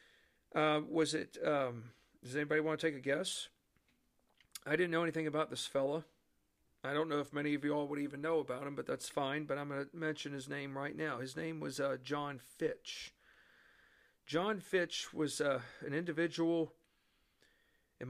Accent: American